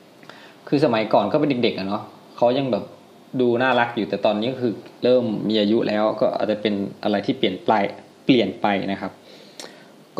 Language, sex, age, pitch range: Thai, male, 20-39, 105-125 Hz